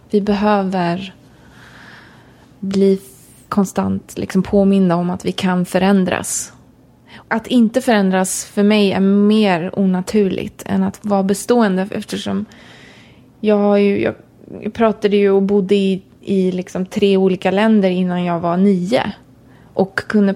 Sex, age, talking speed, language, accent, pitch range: female, 20-39, 125 wpm, English, Swedish, 185-210 Hz